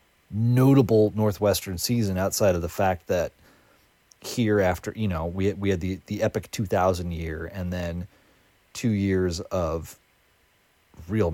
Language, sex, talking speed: English, male, 145 wpm